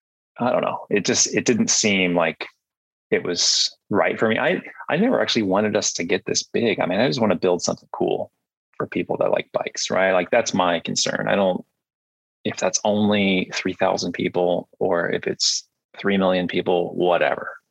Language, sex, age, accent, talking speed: English, male, 20-39, American, 195 wpm